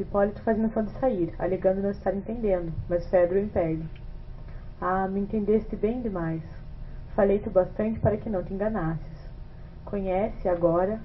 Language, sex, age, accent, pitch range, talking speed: Portuguese, female, 20-39, Brazilian, 180-210 Hz, 145 wpm